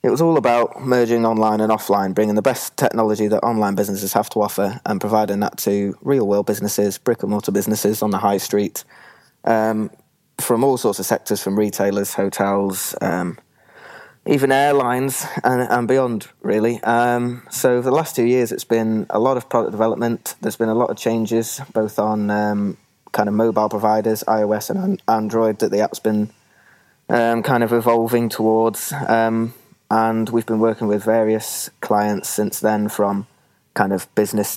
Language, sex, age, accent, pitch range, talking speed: English, male, 20-39, British, 105-115 Hz, 170 wpm